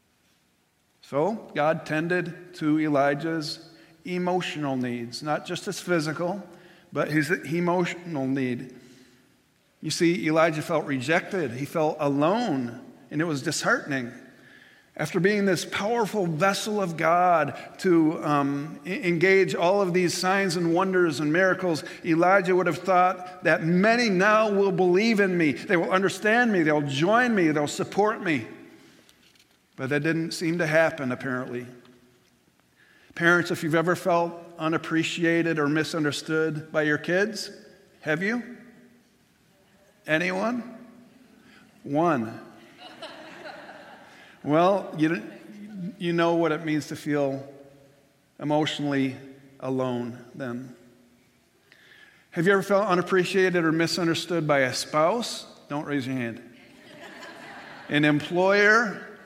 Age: 50-69